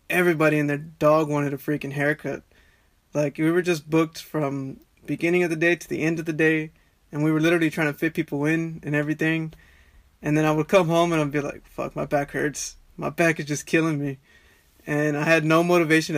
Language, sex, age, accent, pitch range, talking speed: English, male, 20-39, American, 145-170 Hz, 225 wpm